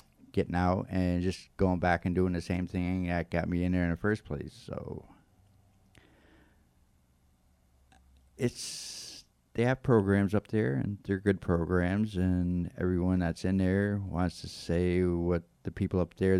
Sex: male